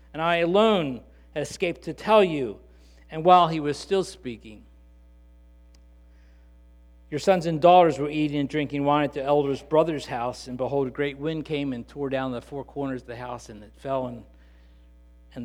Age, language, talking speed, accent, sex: 50-69, English, 185 wpm, American, male